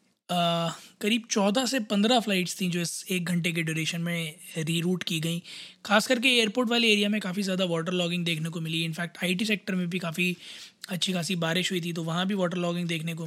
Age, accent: 20-39, native